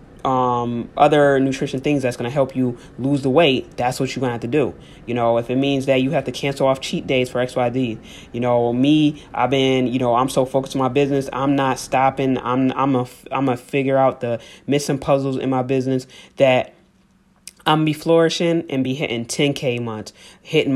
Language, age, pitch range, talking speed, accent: English, 20-39, 125-150 Hz, 220 wpm, American